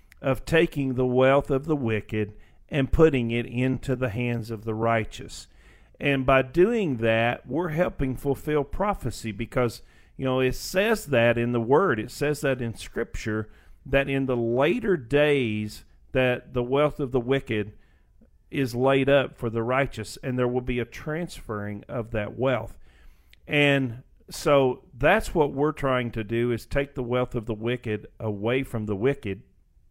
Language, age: English, 50-69